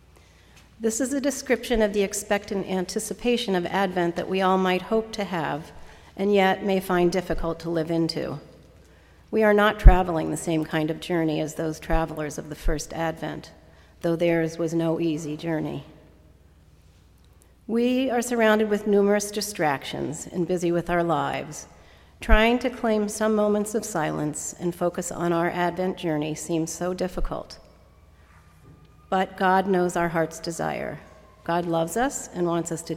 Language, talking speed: English, 160 wpm